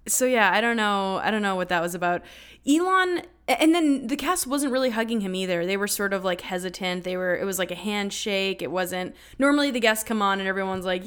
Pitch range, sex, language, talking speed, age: 185-265 Hz, female, English, 245 wpm, 20-39